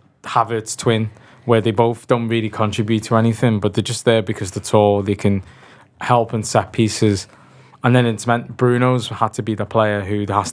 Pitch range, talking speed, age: 110-130 Hz, 200 wpm, 20-39